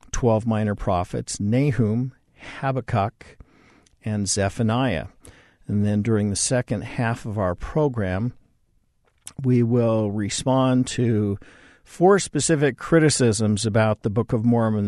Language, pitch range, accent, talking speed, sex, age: English, 100-125 Hz, American, 115 wpm, male, 50-69